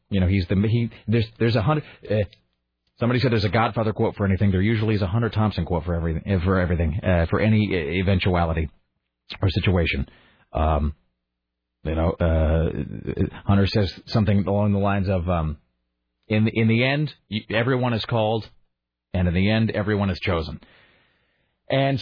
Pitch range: 80-110 Hz